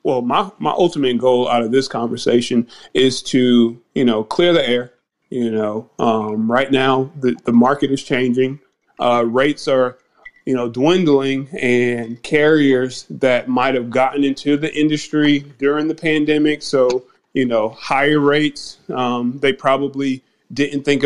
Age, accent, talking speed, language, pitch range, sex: 30-49, American, 155 wpm, English, 125-145 Hz, male